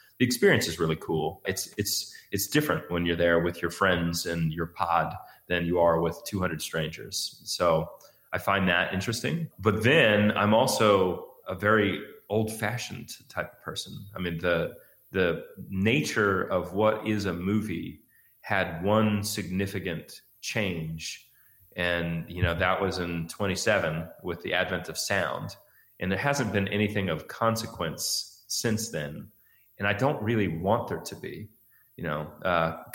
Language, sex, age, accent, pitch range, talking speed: English, male, 30-49, American, 90-115 Hz, 155 wpm